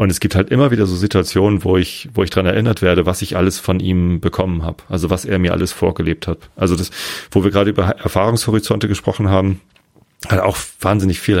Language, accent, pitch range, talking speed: German, German, 90-100 Hz, 225 wpm